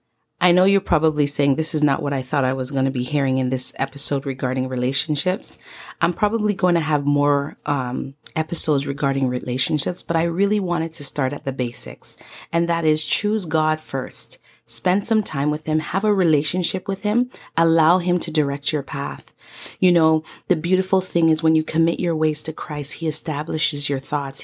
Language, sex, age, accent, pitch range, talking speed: English, female, 30-49, American, 145-165 Hz, 195 wpm